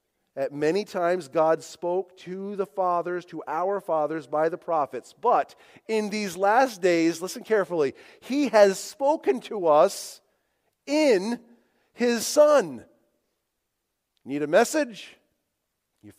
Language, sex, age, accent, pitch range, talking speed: English, male, 40-59, American, 155-240 Hz, 120 wpm